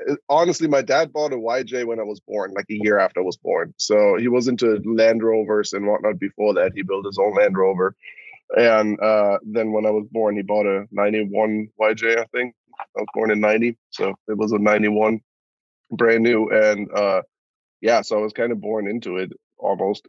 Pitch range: 105-115 Hz